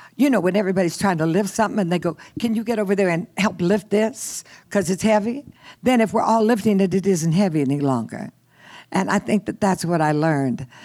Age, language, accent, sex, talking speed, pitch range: 60-79, English, American, female, 230 wpm, 155-210 Hz